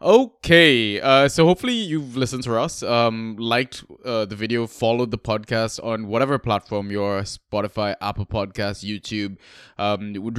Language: English